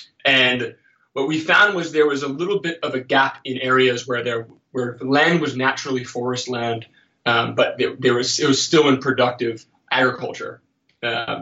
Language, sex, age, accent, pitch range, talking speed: English, male, 20-39, American, 120-140 Hz, 175 wpm